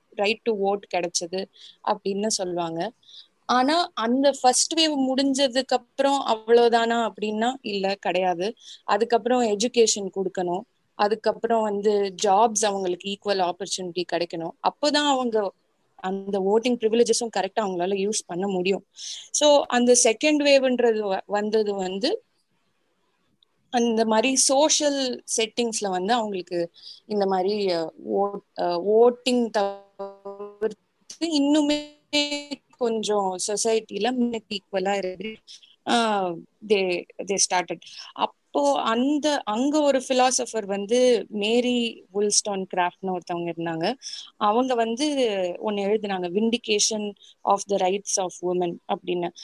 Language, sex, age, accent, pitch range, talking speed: Tamil, female, 20-39, native, 195-245 Hz, 70 wpm